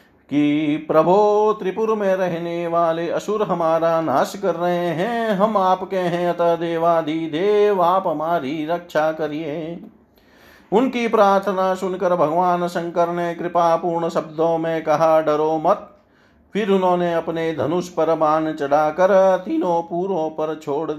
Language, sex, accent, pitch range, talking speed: Hindi, male, native, 155-180 Hz, 130 wpm